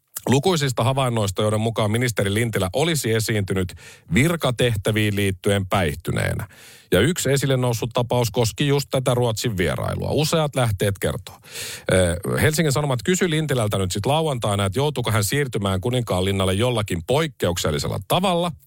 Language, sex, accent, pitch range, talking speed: Finnish, male, native, 95-130 Hz, 120 wpm